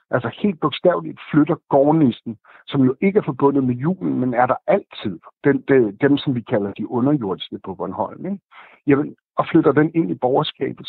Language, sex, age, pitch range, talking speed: Danish, male, 60-79, 120-150 Hz, 175 wpm